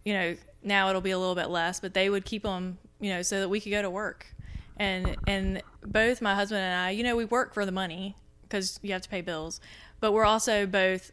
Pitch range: 175-205 Hz